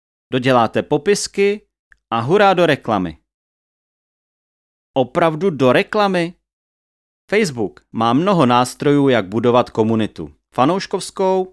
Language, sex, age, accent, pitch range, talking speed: Czech, male, 30-49, native, 115-170 Hz, 90 wpm